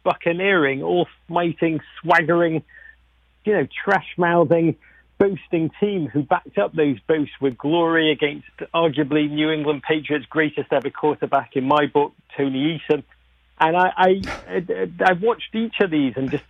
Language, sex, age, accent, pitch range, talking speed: English, male, 40-59, British, 135-155 Hz, 135 wpm